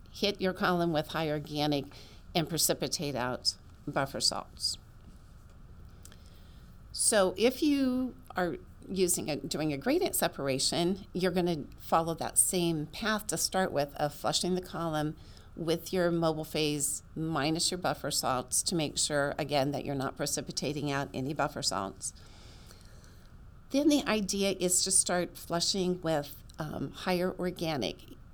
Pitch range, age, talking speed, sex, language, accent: 130-175 Hz, 50-69, 140 wpm, female, English, American